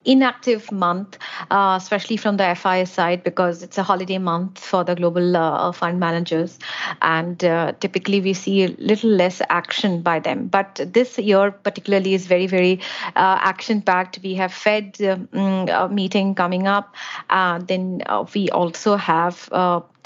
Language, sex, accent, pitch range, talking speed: English, female, Indian, 180-215 Hz, 160 wpm